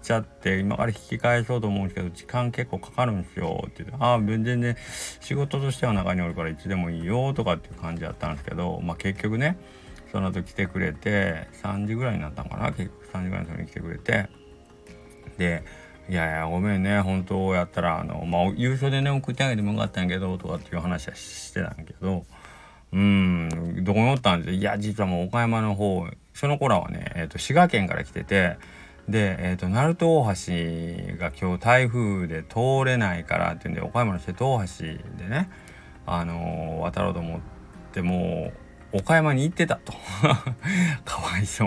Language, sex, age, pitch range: Japanese, male, 40-59, 85-120 Hz